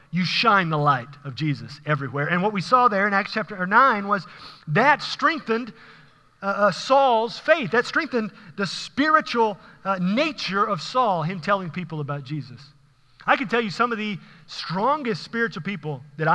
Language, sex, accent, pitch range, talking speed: English, male, American, 145-195 Hz, 170 wpm